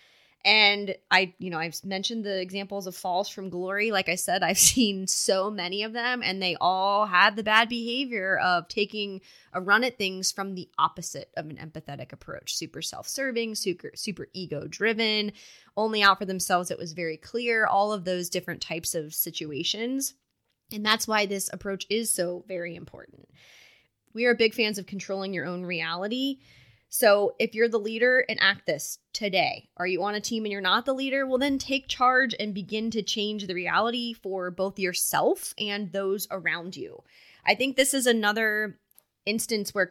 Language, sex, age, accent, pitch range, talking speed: English, female, 20-39, American, 180-225 Hz, 185 wpm